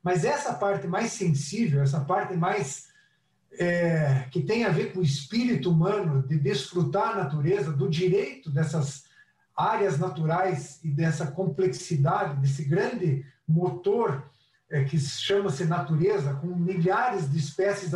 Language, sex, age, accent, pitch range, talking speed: English, male, 50-69, Brazilian, 145-210 Hz, 125 wpm